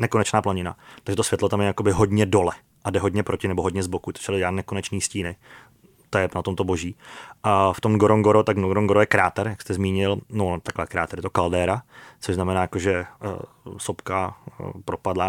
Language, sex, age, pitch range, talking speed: Czech, male, 30-49, 95-105 Hz, 200 wpm